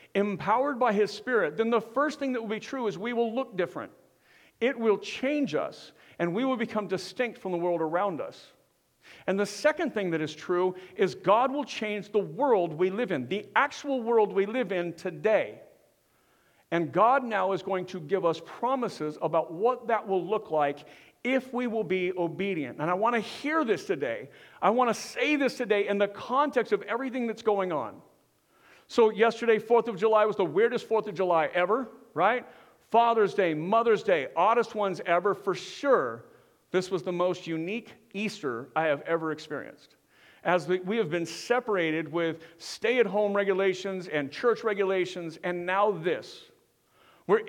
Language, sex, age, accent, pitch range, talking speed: English, male, 50-69, American, 185-235 Hz, 180 wpm